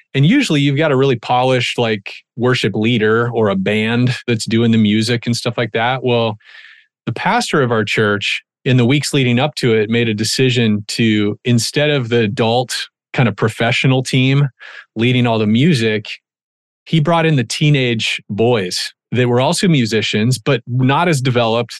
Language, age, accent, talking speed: English, 30-49, American, 175 wpm